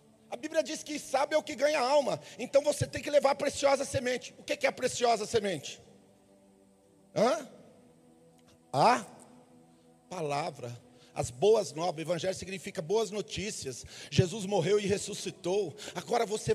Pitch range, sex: 180-260 Hz, male